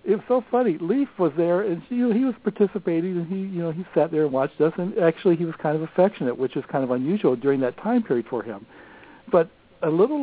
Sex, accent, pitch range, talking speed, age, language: male, American, 135-175 Hz, 245 wpm, 60-79, English